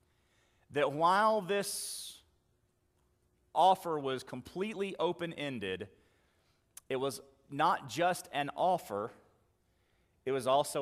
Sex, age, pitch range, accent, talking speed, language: male, 40-59, 135-185 Hz, American, 90 wpm, English